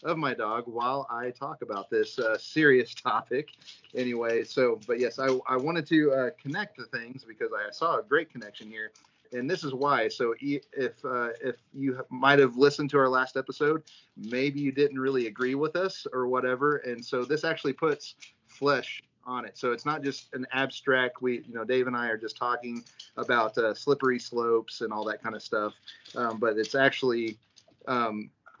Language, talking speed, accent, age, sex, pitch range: English, 195 wpm, American, 30-49, male, 115-145 Hz